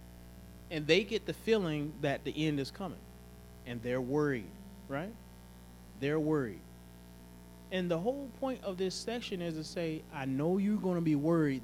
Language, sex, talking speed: English, male, 170 wpm